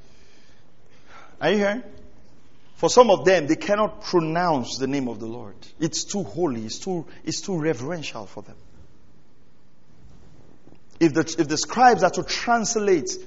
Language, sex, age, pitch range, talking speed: English, male, 40-59, 185-290 Hz, 150 wpm